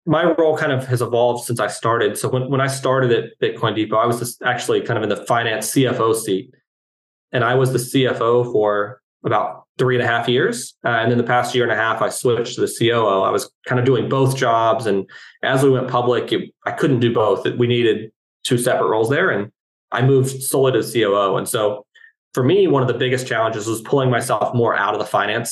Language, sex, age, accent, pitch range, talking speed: English, male, 20-39, American, 110-130 Hz, 235 wpm